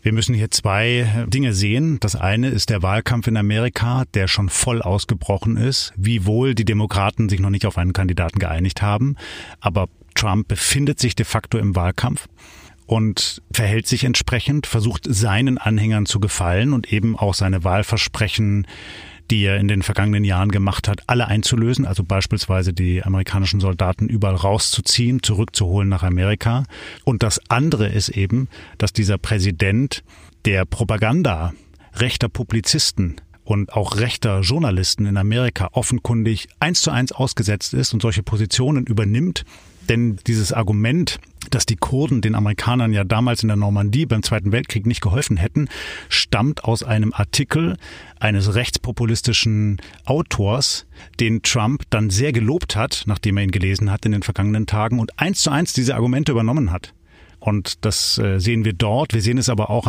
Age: 30-49